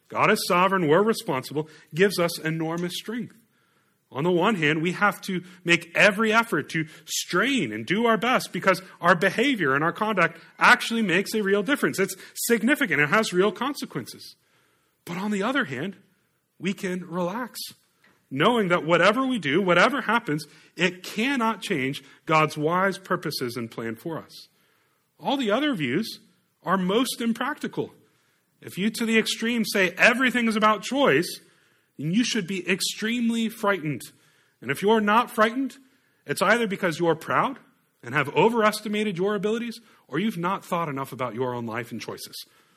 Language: English